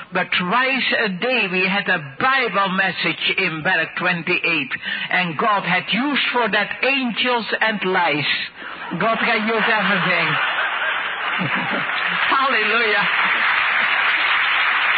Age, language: 60-79, English